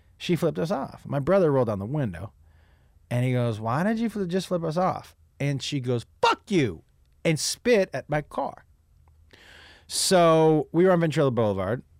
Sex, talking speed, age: male, 185 wpm, 30-49